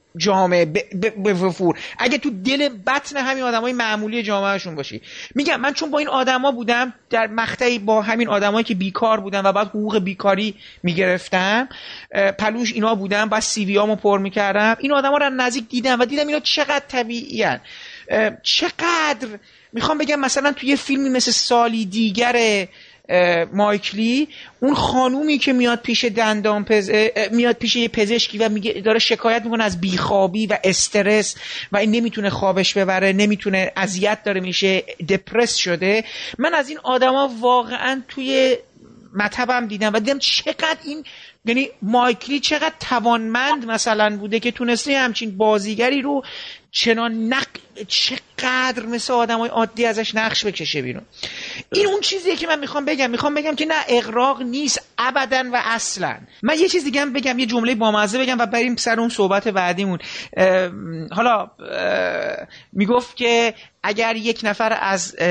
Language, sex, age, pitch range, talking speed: Persian, male, 30-49, 200-255 Hz, 155 wpm